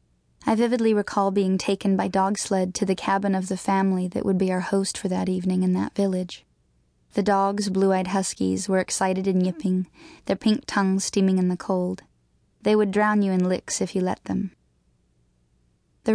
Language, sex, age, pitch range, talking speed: English, female, 10-29, 185-200 Hz, 190 wpm